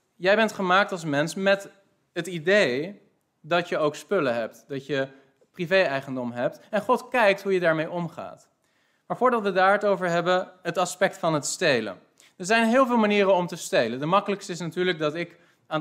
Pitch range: 150-190 Hz